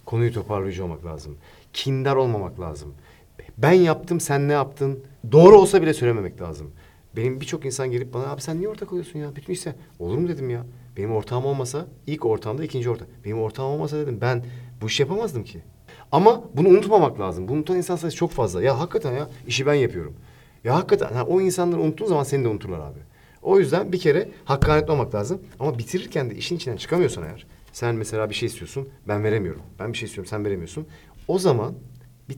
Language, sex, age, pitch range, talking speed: English, male, 50-69, 110-155 Hz, 200 wpm